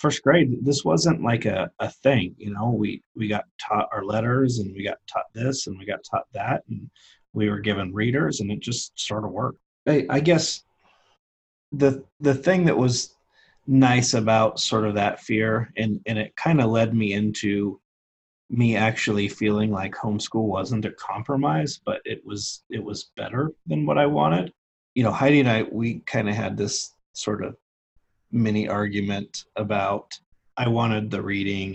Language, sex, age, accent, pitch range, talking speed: English, male, 30-49, American, 100-130 Hz, 180 wpm